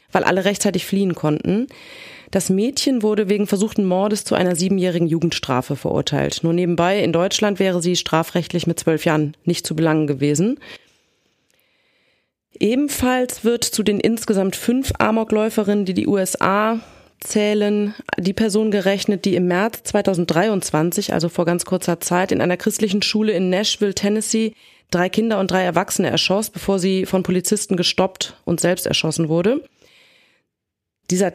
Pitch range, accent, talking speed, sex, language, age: 175-205 Hz, German, 145 wpm, female, German, 30-49